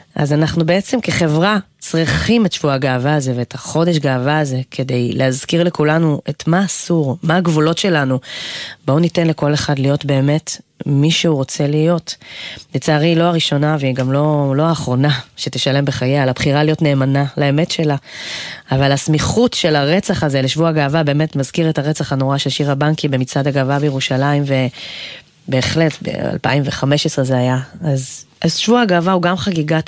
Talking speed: 155 wpm